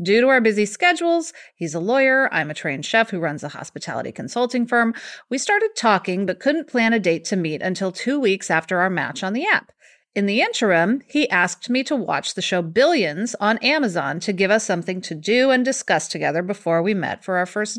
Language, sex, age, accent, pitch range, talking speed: English, female, 30-49, American, 185-255 Hz, 220 wpm